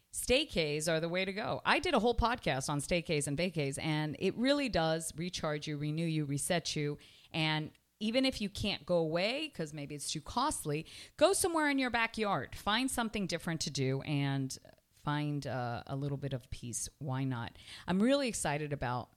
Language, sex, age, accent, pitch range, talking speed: English, female, 40-59, American, 140-175 Hz, 190 wpm